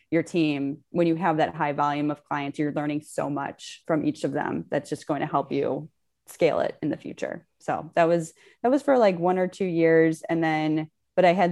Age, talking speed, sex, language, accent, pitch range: 20-39, 235 wpm, female, English, American, 145-165 Hz